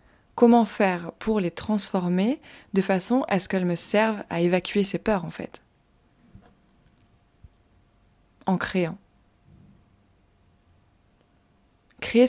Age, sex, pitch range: 20-39, female, 175-210 Hz